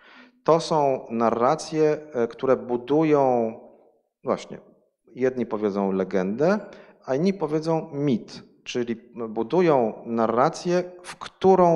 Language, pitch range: Polish, 115-175 Hz